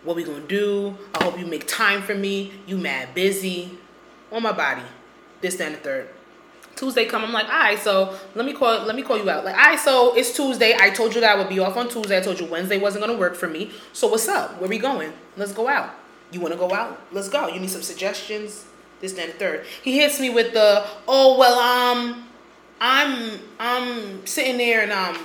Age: 20-39